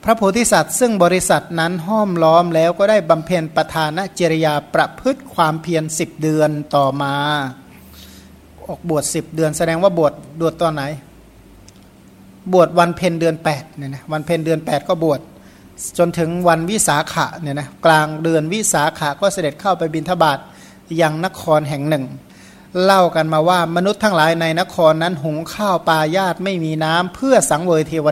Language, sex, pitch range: Thai, male, 155-180 Hz